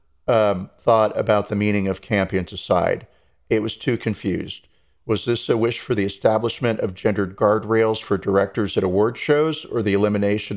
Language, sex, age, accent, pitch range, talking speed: English, male, 40-59, American, 95-115 Hz, 170 wpm